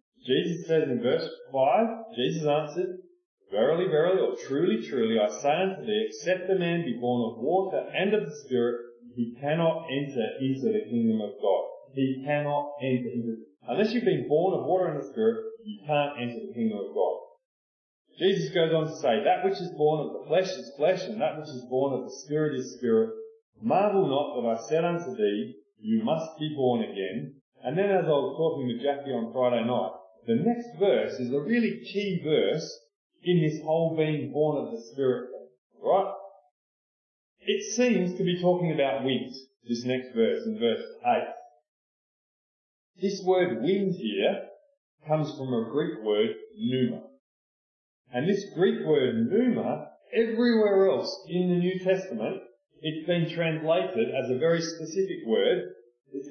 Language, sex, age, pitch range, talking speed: English, male, 30-49, 135-215 Hz, 175 wpm